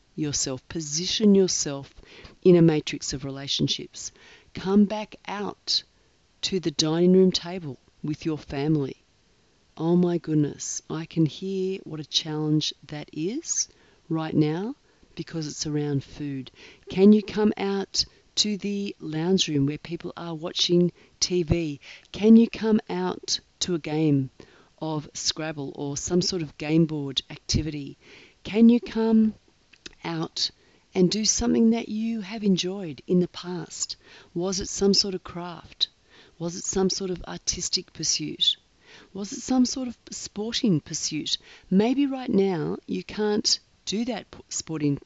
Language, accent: English, Australian